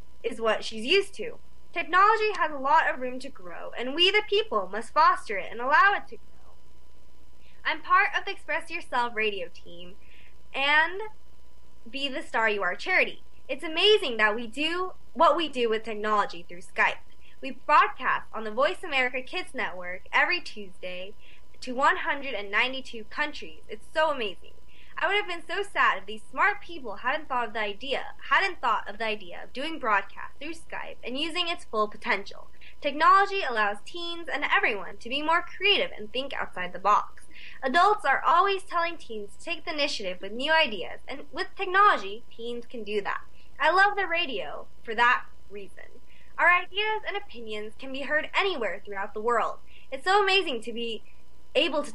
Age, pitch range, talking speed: 20-39, 215-345 Hz, 180 wpm